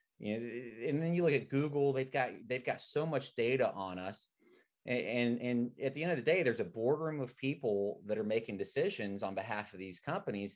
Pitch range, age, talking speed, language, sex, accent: 105-150 Hz, 30-49, 225 wpm, English, male, American